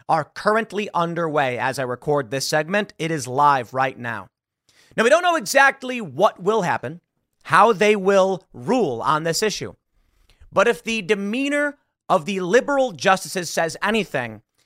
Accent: American